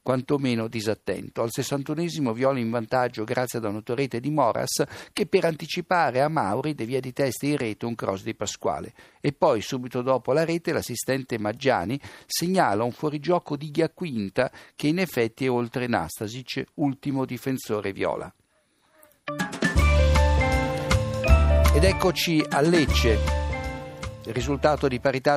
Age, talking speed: 60-79, 130 wpm